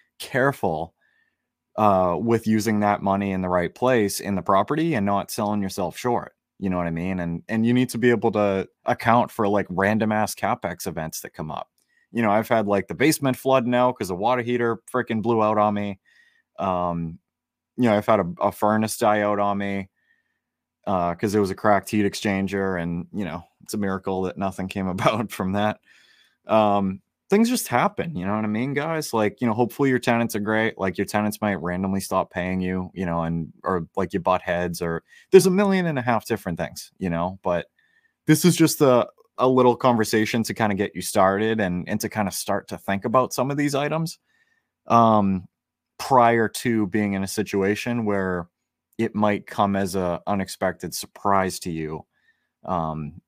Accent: American